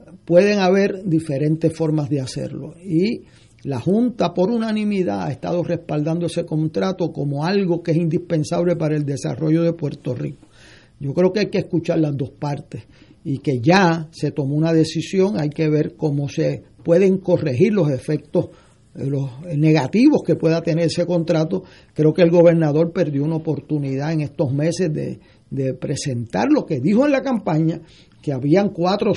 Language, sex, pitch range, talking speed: Spanish, male, 150-180 Hz, 170 wpm